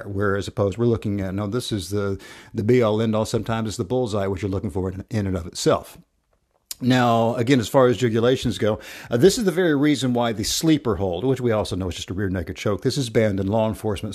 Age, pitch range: 50-69, 105-130 Hz